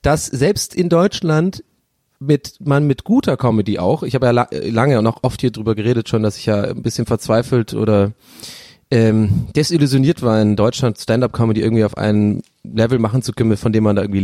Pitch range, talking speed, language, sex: 115-155 Hz, 200 wpm, German, male